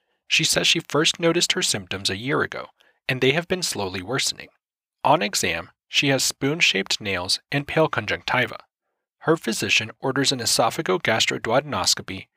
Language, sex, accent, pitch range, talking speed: English, male, American, 110-160 Hz, 145 wpm